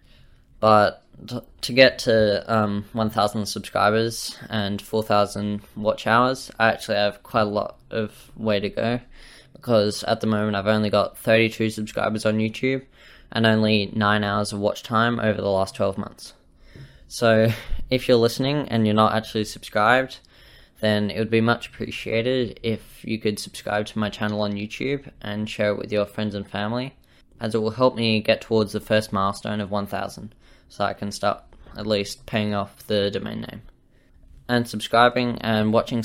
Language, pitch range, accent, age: English, 105-115 Hz, Australian, 10-29